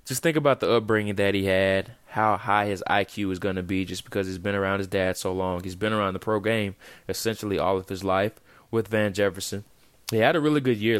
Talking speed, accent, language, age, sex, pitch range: 245 wpm, American, English, 20-39, male, 95-110 Hz